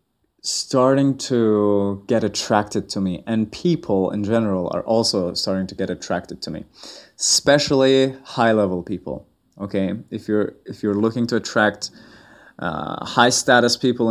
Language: English